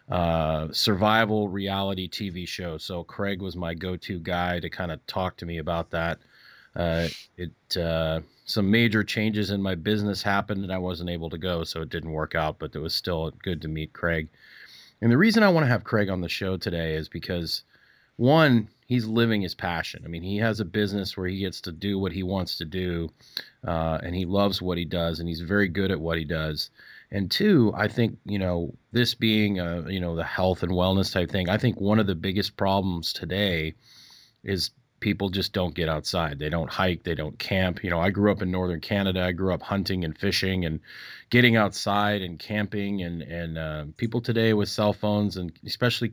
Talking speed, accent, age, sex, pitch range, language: 215 wpm, American, 30-49, male, 85-105 Hz, English